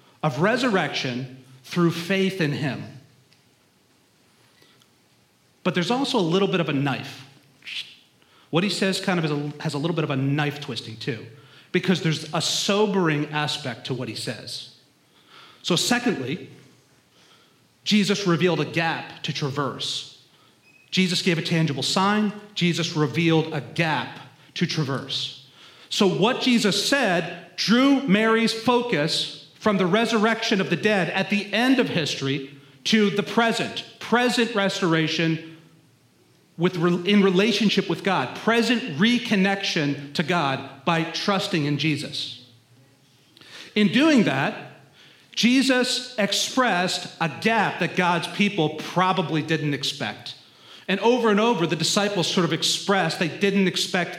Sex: male